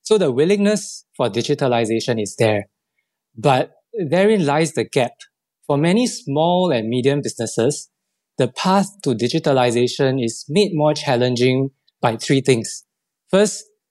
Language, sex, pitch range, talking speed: English, male, 125-175 Hz, 130 wpm